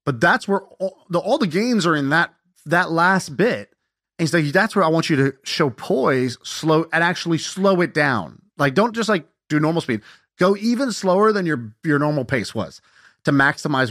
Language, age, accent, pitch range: English, 30-49, American, 125-170 Hz